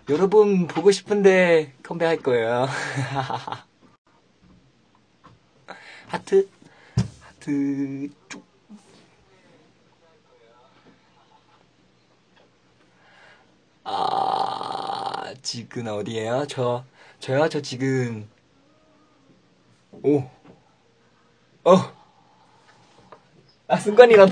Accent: native